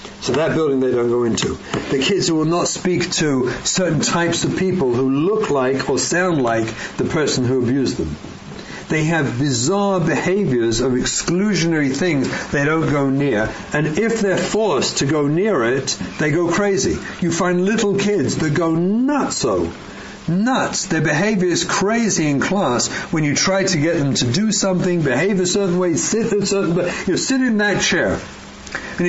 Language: English